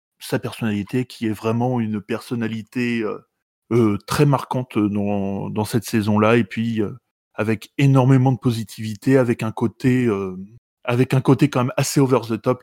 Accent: French